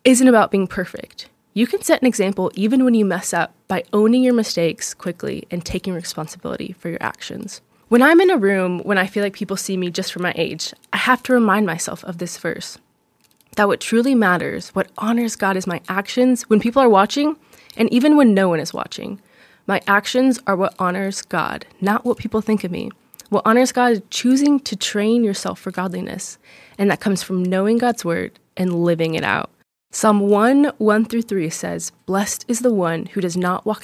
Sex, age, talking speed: female, 20-39, 205 wpm